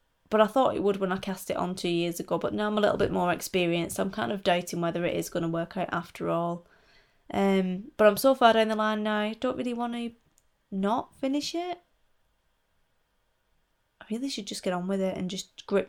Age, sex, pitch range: 20-39, female, 185-225 Hz